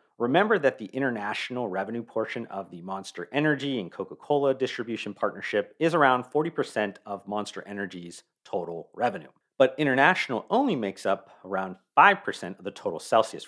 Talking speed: 145 wpm